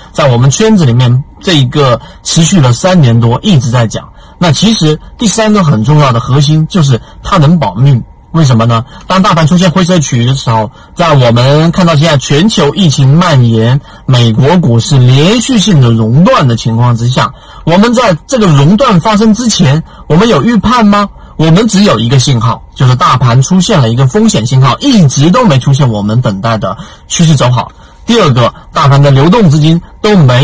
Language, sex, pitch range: Chinese, male, 125-185 Hz